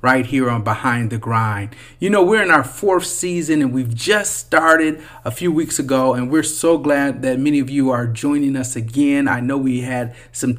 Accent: American